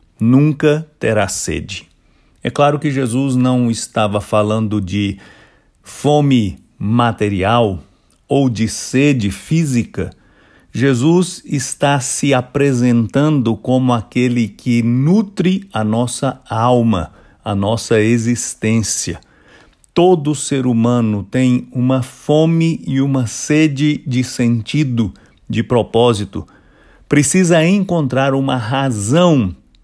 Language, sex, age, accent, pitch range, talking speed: English, male, 50-69, Brazilian, 105-145 Hz, 95 wpm